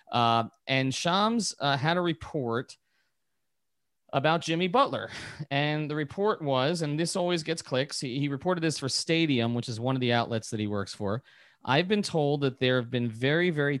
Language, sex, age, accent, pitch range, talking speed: English, male, 30-49, American, 120-160 Hz, 190 wpm